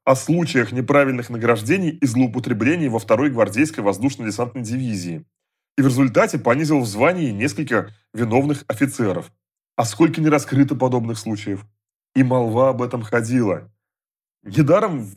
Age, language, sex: 30-49, Russian, male